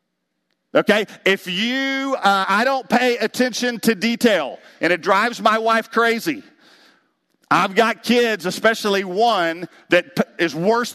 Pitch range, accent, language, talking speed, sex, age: 190-235 Hz, American, English, 130 wpm, male, 50-69